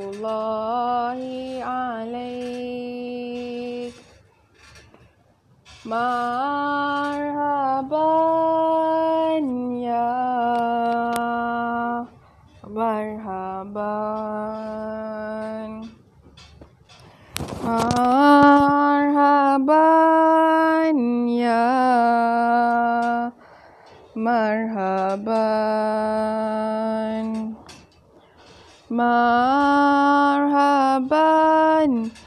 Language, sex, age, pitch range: Malay, female, 20-39, 230-280 Hz